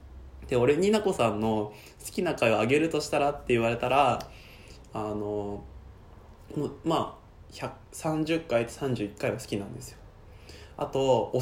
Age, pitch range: 20-39, 105-165 Hz